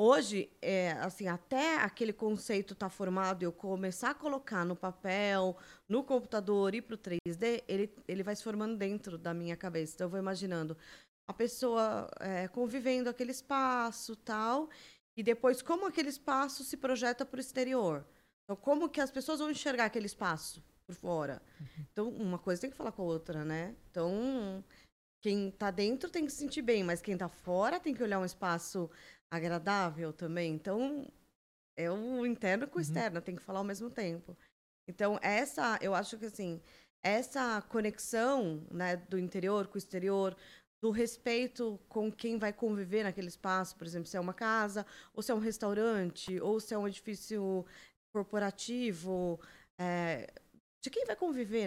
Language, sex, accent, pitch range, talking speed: Portuguese, female, Brazilian, 180-235 Hz, 165 wpm